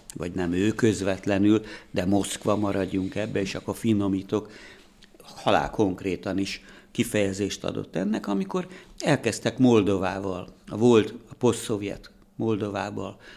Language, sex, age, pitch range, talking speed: Hungarian, male, 60-79, 100-115 Hz, 110 wpm